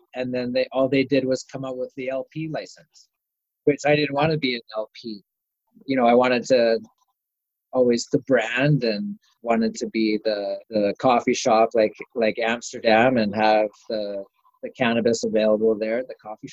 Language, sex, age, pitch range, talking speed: English, male, 30-49, 110-135 Hz, 180 wpm